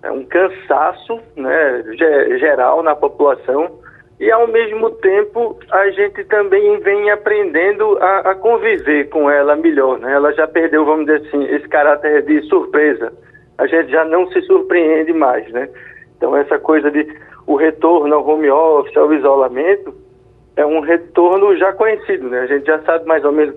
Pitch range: 145-210 Hz